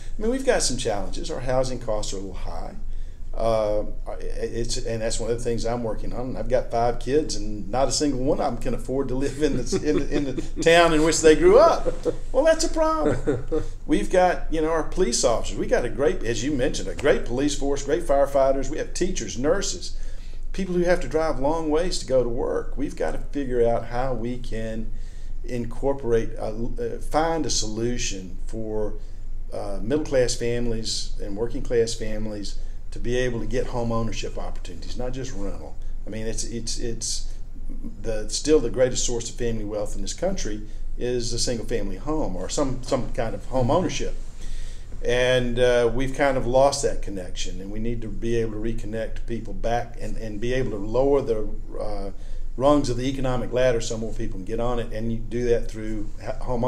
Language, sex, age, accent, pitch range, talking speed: English, male, 50-69, American, 110-130 Hz, 205 wpm